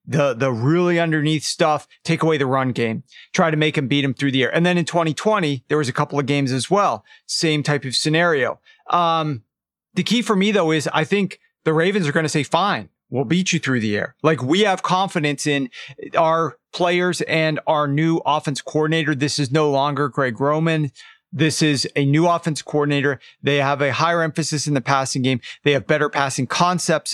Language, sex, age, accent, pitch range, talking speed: English, male, 40-59, American, 140-165 Hz, 210 wpm